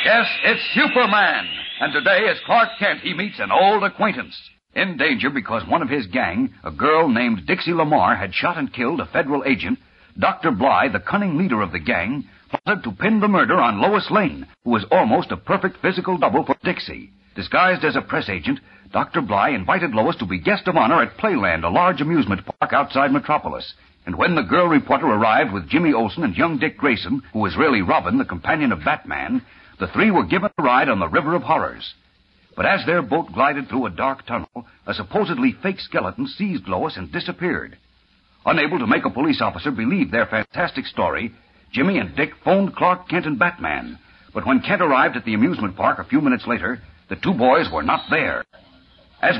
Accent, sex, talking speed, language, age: American, male, 200 wpm, English, 60-79